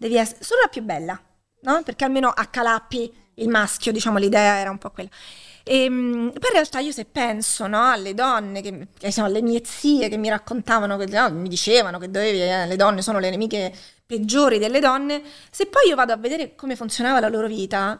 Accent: native